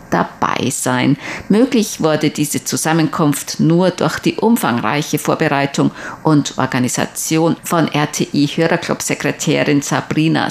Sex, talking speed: female, 95 wpm